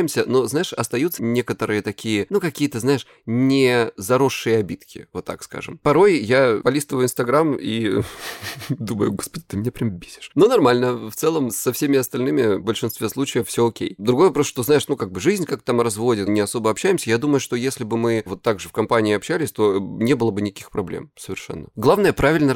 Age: 20-39